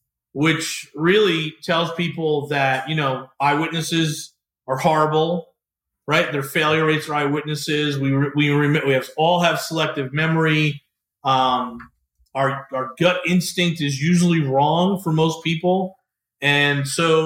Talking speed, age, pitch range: 130 wpm, 40-59, 140-180 Hz